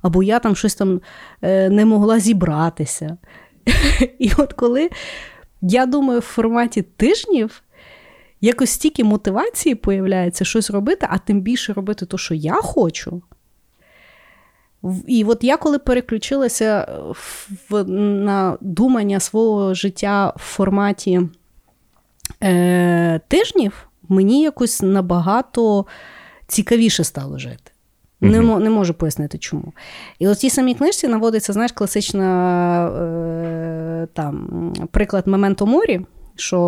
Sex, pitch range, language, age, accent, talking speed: female, 175-220 Hz, Ukrainian, 30-49, native, 110 wpm